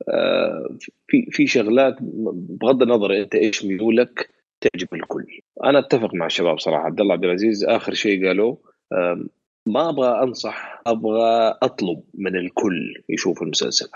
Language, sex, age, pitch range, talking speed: Arabic, male, 30-49, 95-120 Hz, 135 wpm